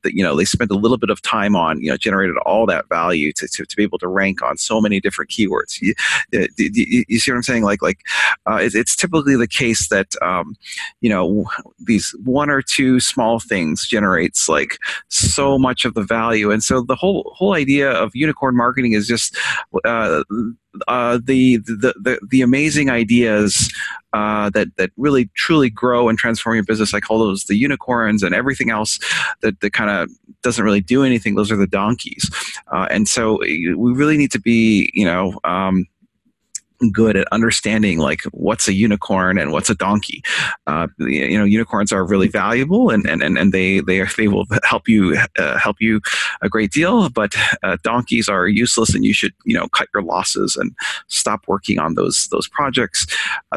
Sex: male